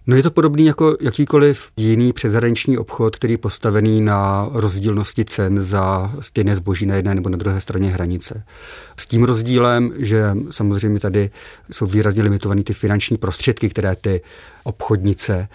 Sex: male